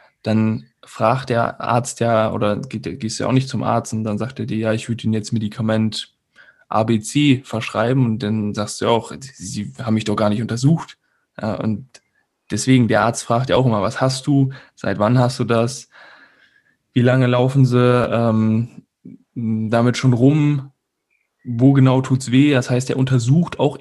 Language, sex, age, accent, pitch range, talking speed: German, male, 10-29, German, 110-130 Hz, 185 wpm